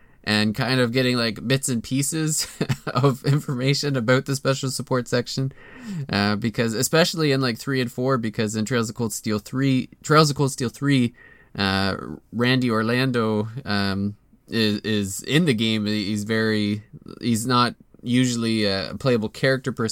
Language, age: English, 20-39